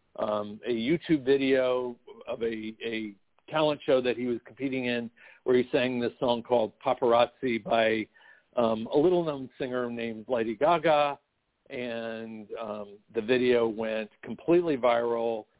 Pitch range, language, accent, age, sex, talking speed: 110-135 Hz, English, American, 50-69, male, 140 wpm